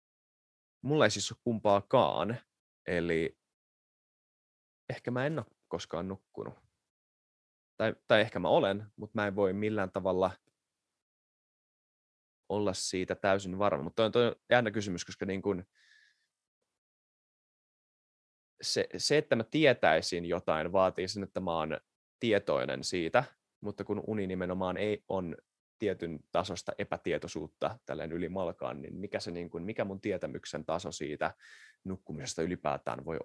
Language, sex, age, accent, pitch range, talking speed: Finnish, male, 20-39, native, 90-115 Hz, 135 wpm